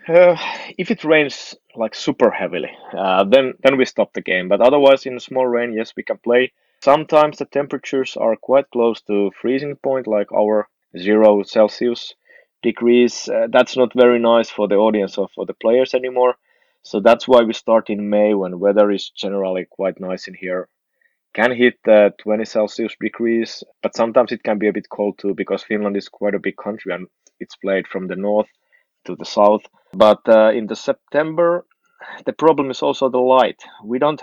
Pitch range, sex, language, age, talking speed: 100-125 Hz, male, English, 20-39, 195 wpm